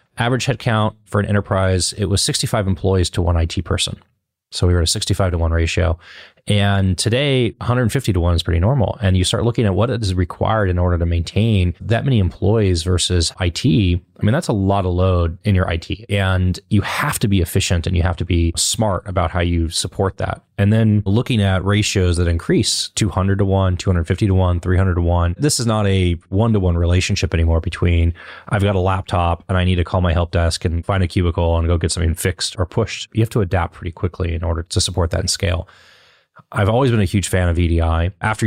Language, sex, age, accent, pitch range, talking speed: English, male, 20-39, American, 85-105 Hz, 225 wpm